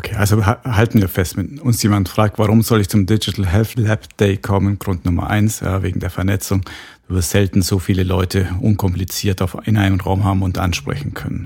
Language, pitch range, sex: German, 95-110 Hz, male